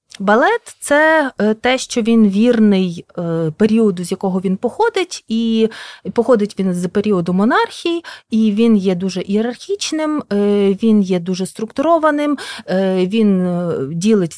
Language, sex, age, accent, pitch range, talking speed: Ukrainian, female, 30-49, native, 185-240 Hz, 115 wpm